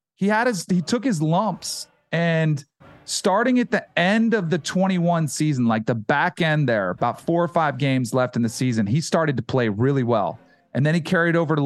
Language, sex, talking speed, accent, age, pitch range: English, male, 210 wpm, American, 40-59, 145-190 Hz